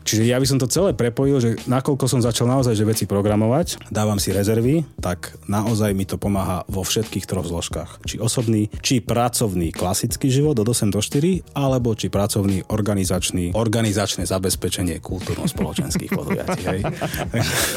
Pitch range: 95-120 Hz